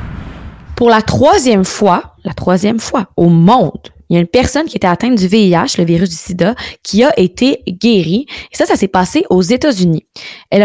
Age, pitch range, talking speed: 20-39, 185-235 Hz, 195 wpm